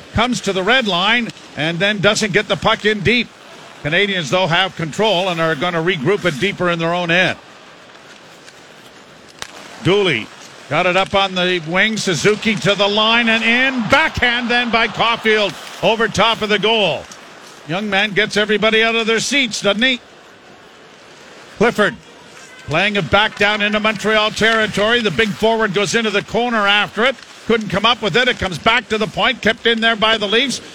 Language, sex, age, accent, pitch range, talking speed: English, male, 50-69, American, 180-220 Hz, 185 wpm